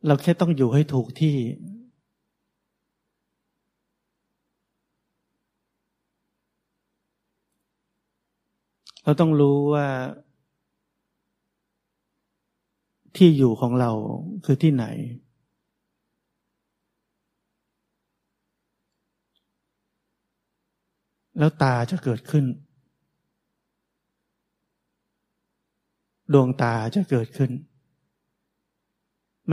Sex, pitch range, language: male, 115-145 Hz, Thai